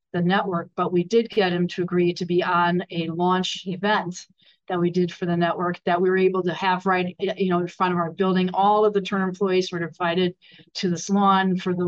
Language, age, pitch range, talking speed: English, 40-59, 175-195 Hz, 235 wpm